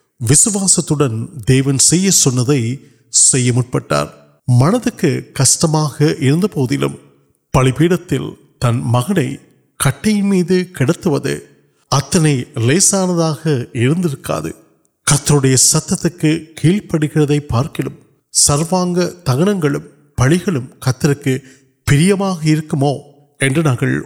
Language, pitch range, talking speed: Urdu, 125-160 Hz, 55 wpm